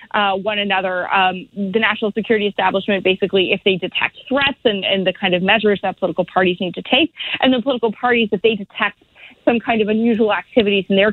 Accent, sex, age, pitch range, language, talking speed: American, female, 30-49, 200-245 Hz, English, 210 wpm